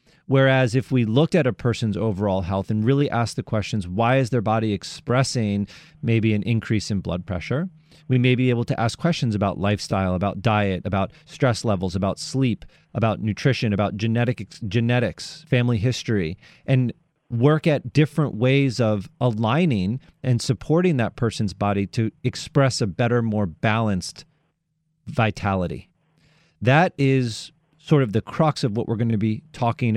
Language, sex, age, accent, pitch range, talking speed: English, male, 30-49, American, 110-140 Hz, 160 wpm